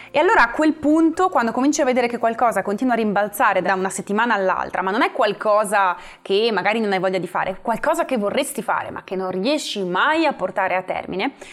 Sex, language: female, Italian